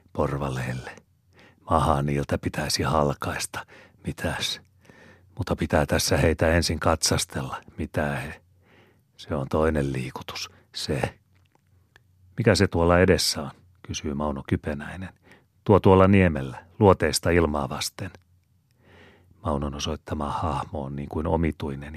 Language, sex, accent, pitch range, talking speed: Finnish, male, native, 75-95 Hz, 105 wpm